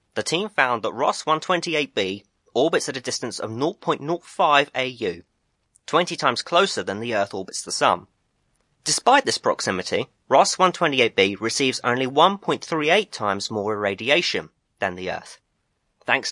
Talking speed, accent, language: 145 wpm, British, English